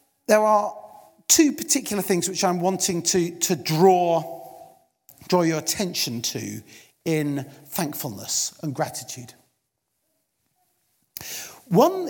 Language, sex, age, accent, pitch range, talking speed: English, male, 40-59, British, 150-195 Hz, 100 wpm